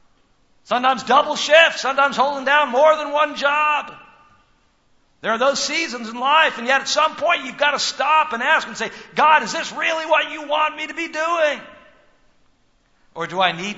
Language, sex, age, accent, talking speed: English, male, 60-79, American, 190 wpm